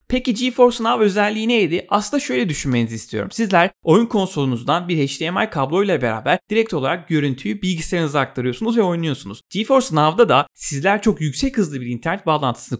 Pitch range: 130-180 Hz